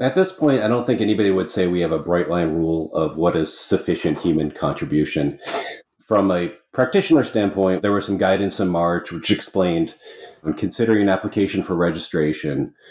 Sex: male